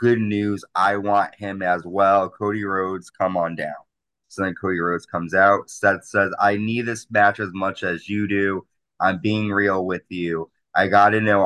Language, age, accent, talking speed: English, 20-39, American, 200 wpm